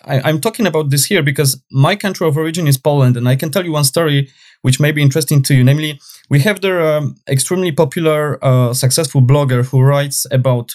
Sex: male